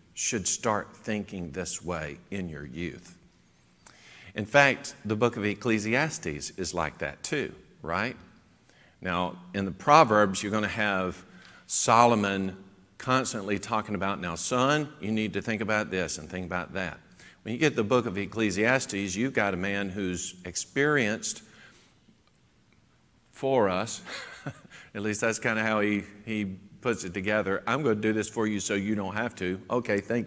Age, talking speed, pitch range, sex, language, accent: 50-69, 165 wpm, 100-120 Hz, male, English, American